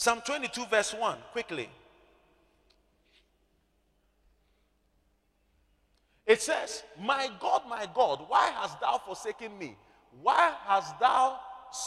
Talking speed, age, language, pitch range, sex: 95 wpm, 40-59, English, 195-290 Hz, male